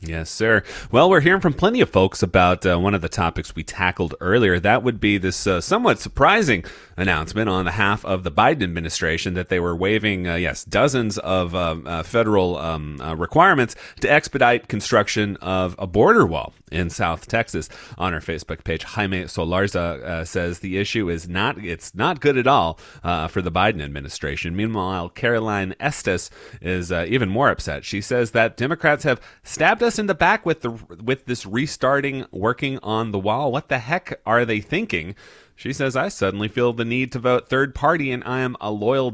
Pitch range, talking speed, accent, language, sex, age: 85-125 Hz, 195 wpm, American, English, male, 30-49